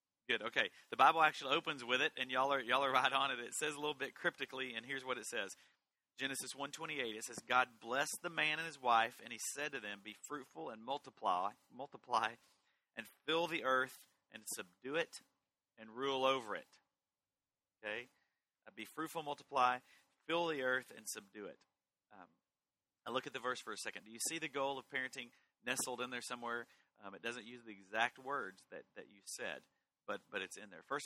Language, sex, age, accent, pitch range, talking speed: English, male, 40-59, American, 105-135 Hz, 205 wpm